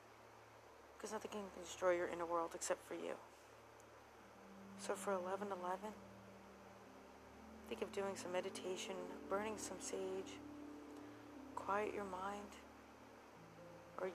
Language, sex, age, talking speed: English, female, 40-59, 110 wpm